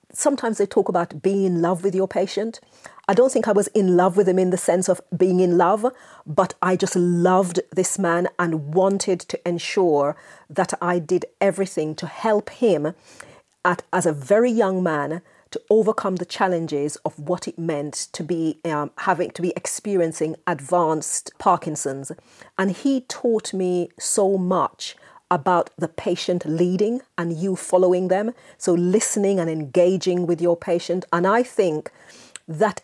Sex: female